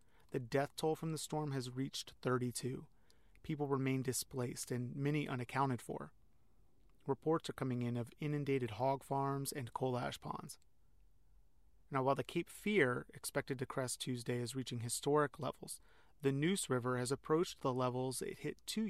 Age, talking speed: 30-49, 160 wpm